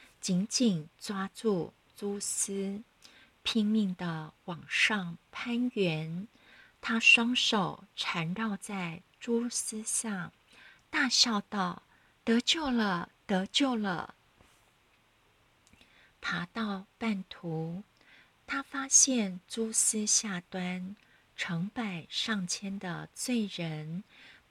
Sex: female